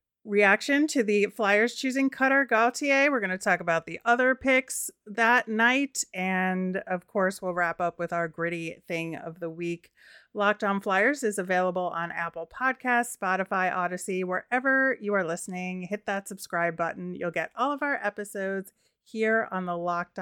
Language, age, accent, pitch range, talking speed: English, 30-49, American, 180-220 Hz, 170 wpm